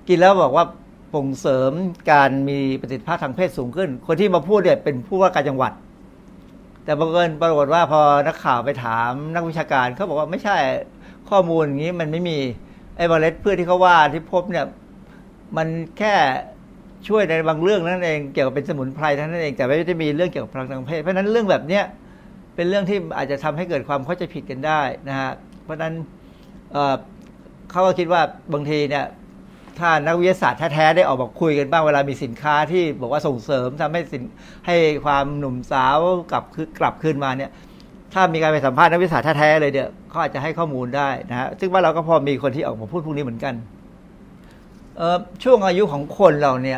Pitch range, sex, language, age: 140-180 Hz, male, Thai, 60-79